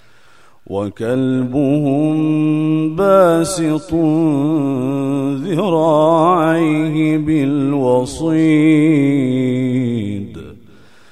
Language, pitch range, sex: Arabic, 120-155 Hz, male